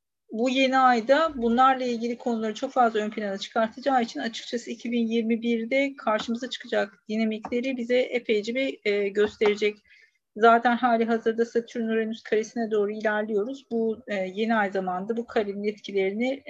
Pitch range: 205-235 Hz